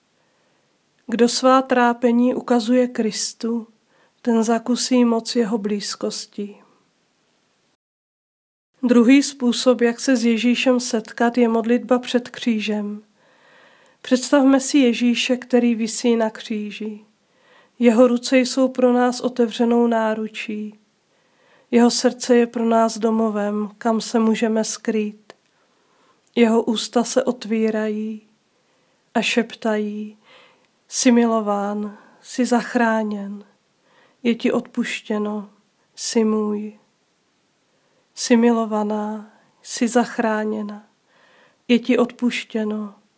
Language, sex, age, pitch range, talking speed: Czech, female, 40-59, 215-245 Hz, 90 wpm